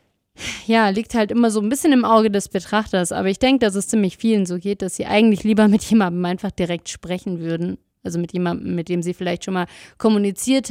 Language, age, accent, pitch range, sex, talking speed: German, 30-49, German, 180-215 Hz, female, 225 wpm